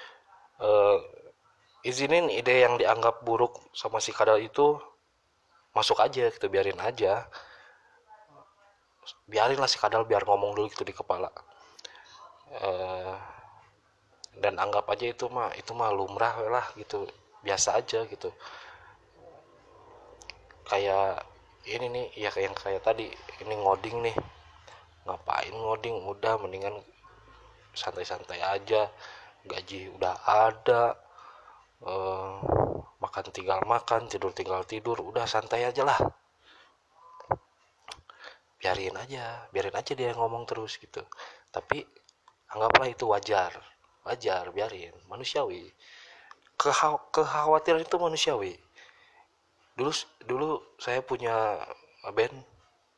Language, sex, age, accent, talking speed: Indonesian, male, 20-39, native, 105 wpm